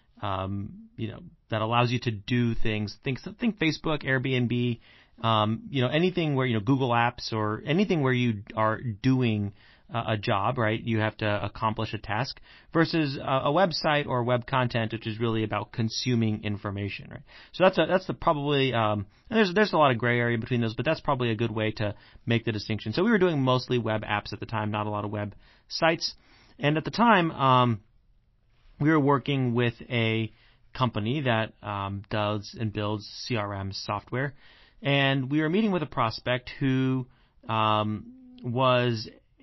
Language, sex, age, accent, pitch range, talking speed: English, male, 30-49, American, 110-135 Hz, 185 wpm